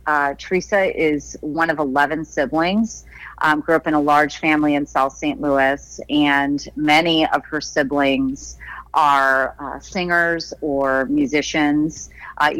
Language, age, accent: English, 30-49, American